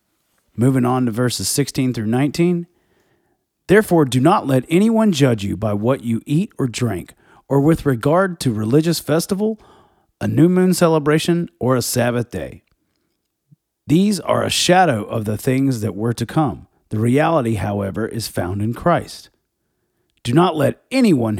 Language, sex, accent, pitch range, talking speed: English, male, American, 110-155 Hz, 155 wpm